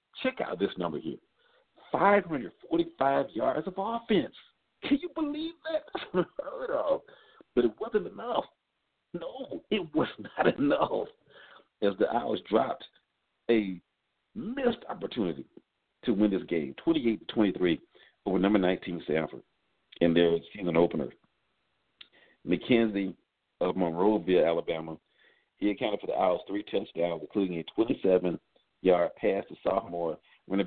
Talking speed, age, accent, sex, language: 125 wpm, 50-69, American, male, English